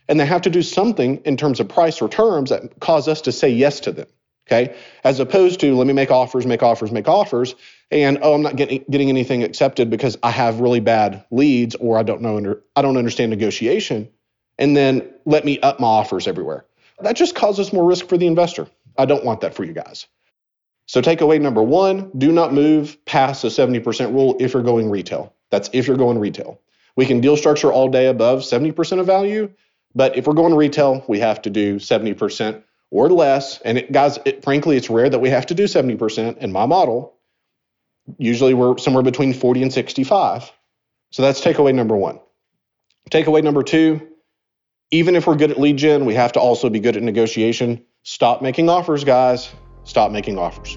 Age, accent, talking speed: 40-59, American, 205 wpm